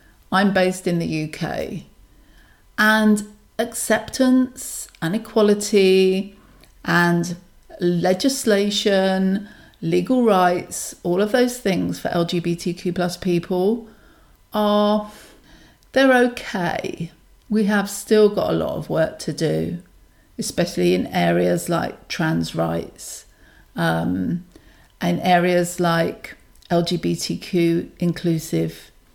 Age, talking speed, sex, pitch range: 40-59, 95 wpm, female, 170-200 Hz